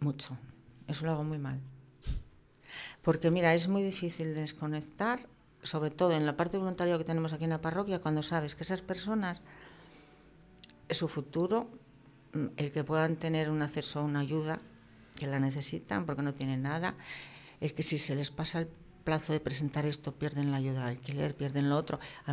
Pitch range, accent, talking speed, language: 145-175 Hz, Spanish, 180 wpm, Spanish